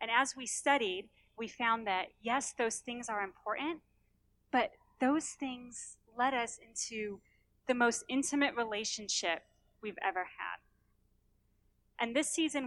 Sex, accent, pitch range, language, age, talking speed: female, American, 195-250 Hz, English, 30-49, 135 wpm